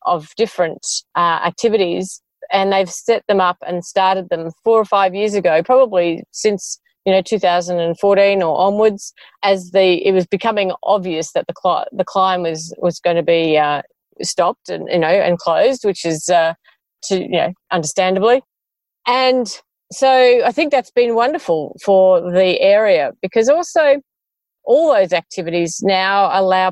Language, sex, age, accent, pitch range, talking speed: English, female, 40-59, Australian, 180-235 Hz, 155 wpm